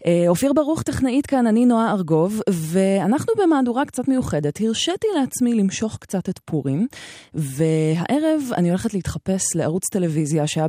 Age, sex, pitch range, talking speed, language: 20-39, female, 150-205 Hz, 135 wpm, Hebrew